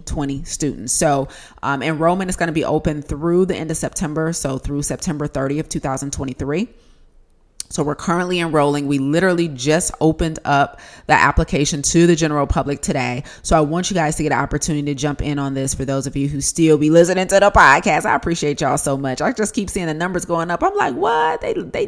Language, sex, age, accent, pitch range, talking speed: English, female, 30-49, American, 140-170 Hz, 220 wpm